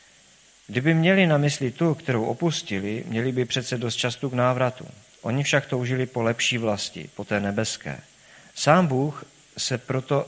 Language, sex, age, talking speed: Czech, male, 50-69, 160 wpm